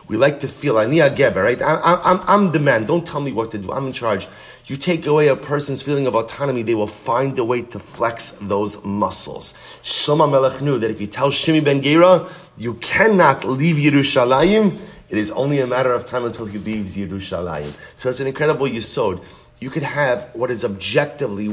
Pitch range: 110-145 Hz